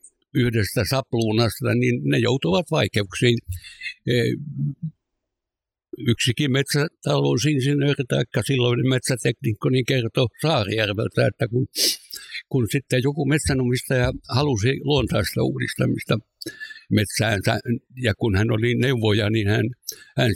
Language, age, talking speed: Finnish, 60-79, 95 wpm